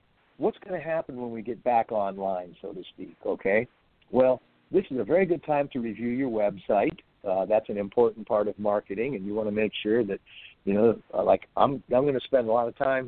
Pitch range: 105-125 Hz